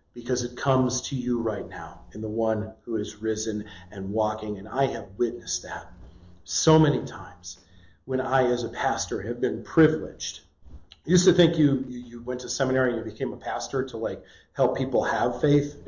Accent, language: American, English